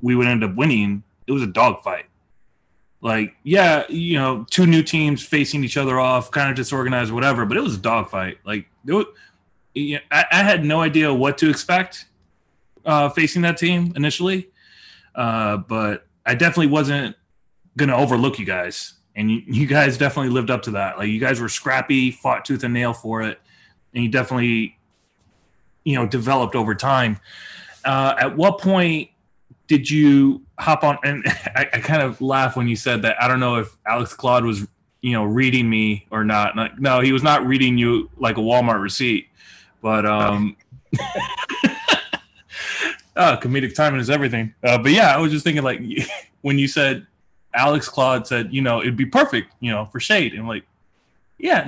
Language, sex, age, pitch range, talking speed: English, male, 30-49, 115-145 Hz, 185 wpm